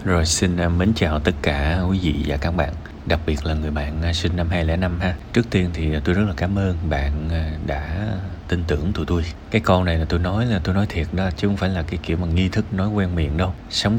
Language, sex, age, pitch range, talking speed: Vietnamese, male, 20-39, 75-95 Hz, 255 wpm